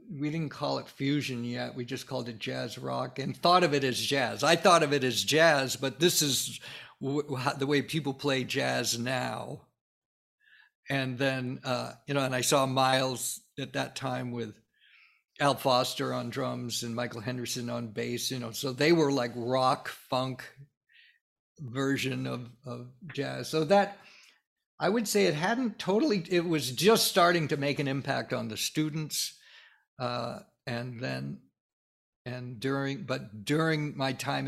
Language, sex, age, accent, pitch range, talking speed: English, male, 60-79, American, 125-150 Hz, 165 wpm